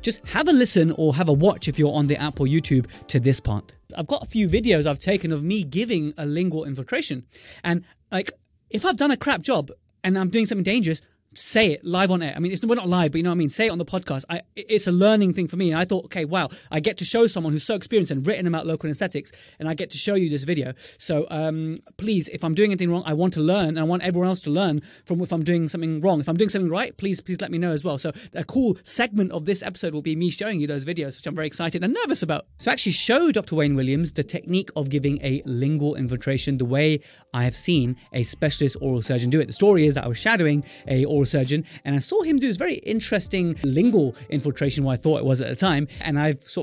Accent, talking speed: British, 275 wpm